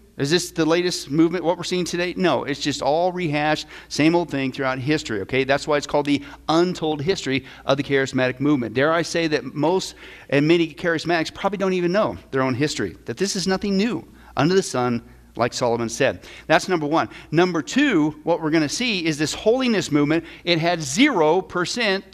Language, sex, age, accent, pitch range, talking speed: English, male, 50-69, American, 145-185 Hz, 200 wpm